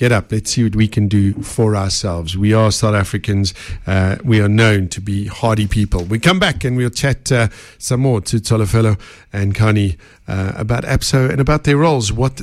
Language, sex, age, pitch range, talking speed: English, male, 50-69, 110-155 Hz, 210 wpm